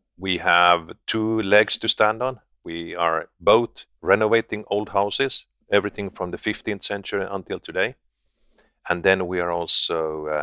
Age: 40-59